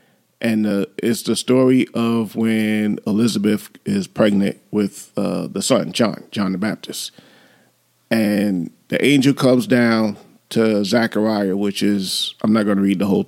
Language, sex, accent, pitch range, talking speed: English, male, American, 100-110 Hz, 155 wpm